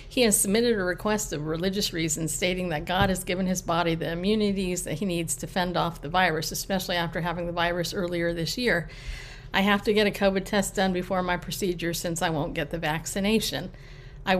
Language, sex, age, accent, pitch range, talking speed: English, female, 50-69, American, 165-200 Hz, 215 wpm